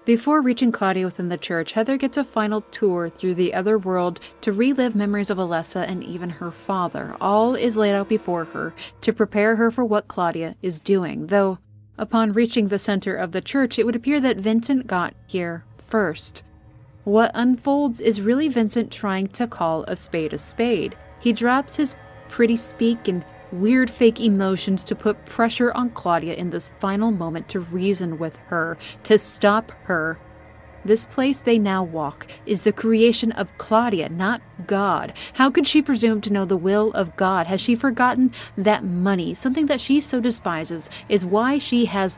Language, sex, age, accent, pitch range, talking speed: English, female, 30-49, American, 180-235 Hz, 180 wpm